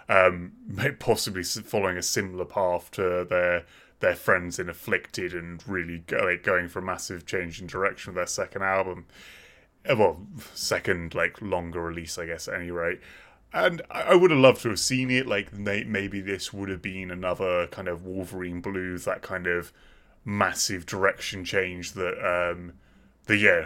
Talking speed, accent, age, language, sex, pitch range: 175 wpm, British, 20-39, English, male, 90-95 Hz